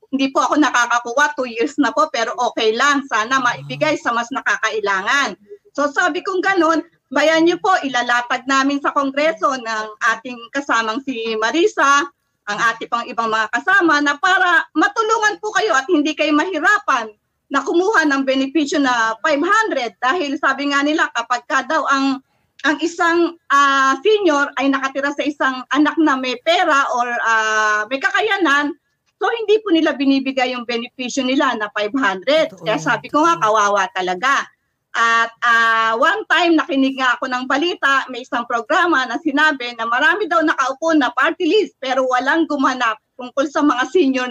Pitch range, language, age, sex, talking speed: 240-320 Hz, English, 40-59, female, 165 wpm